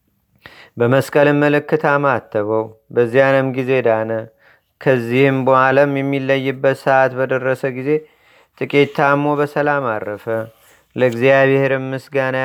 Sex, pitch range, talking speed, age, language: male, 130-145 Hz, 80 wpm, 30-49, Amharic